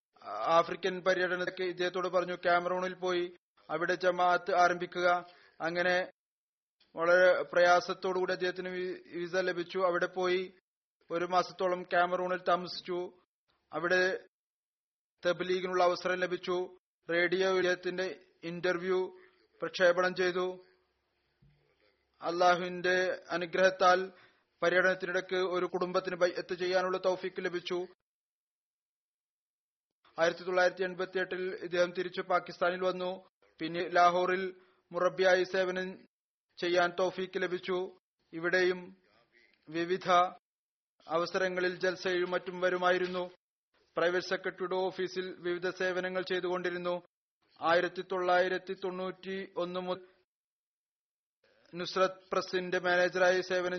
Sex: male